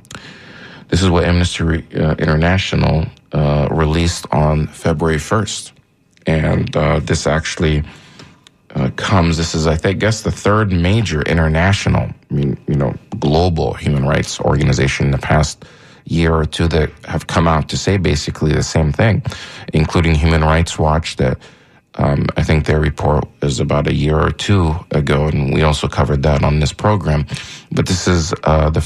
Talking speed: 170 wpm